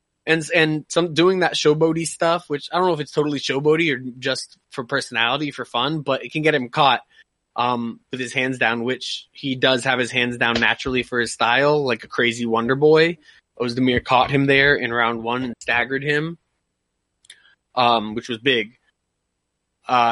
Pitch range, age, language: 120-145 Hz, 20-39, English